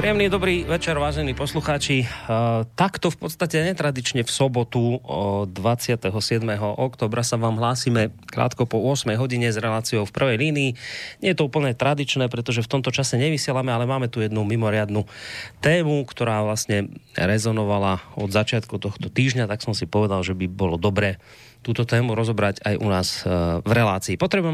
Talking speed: 160 wpm